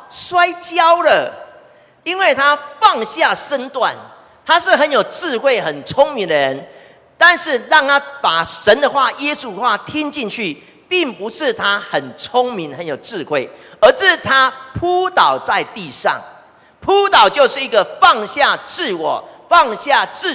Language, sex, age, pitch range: Chinese, male, 40-59, 190-315 Hz